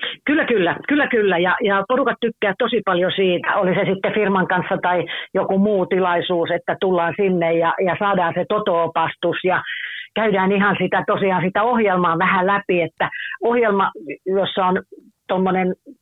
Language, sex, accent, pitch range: Finnish, female, native, 175-220 Hz